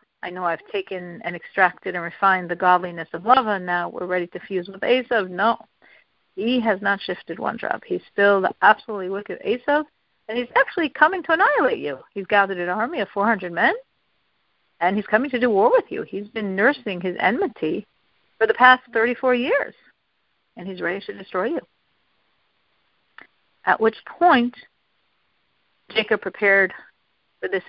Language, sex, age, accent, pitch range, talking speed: English, female, 50-69, American, 185-245 Hz, 170 wpm